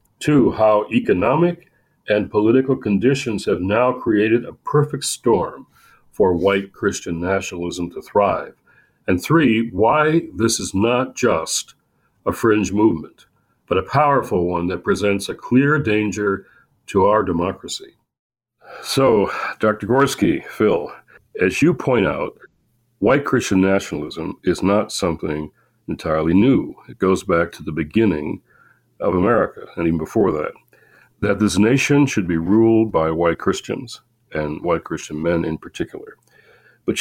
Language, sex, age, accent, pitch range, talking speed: English, male, 60-79, American, 85-125 Hz, 135 wpm